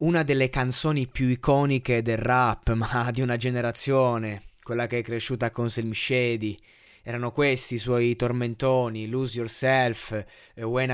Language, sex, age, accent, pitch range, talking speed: Italian, male, 20-39, native, 120-145 Hz, 145 wpm